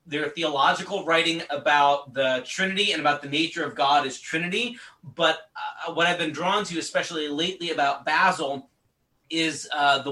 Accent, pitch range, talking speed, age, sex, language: American, 140-180 Hz, 165 wpm, 30-49, male, English